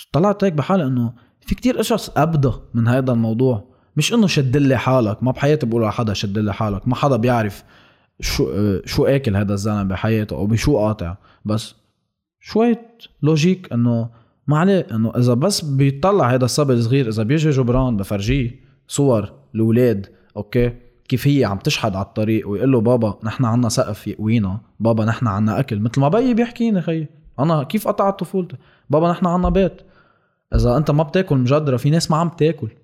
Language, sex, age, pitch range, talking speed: Arabic, male, 20-39, 115-180 Hz, 175 wpm